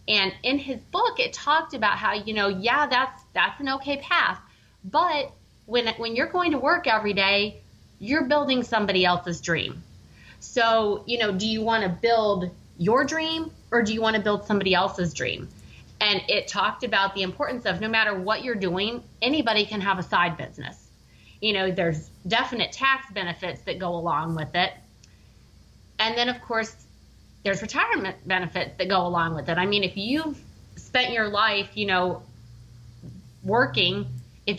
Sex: female